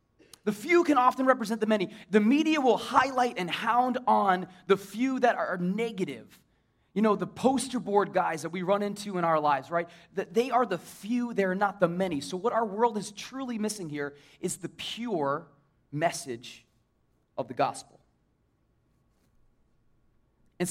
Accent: American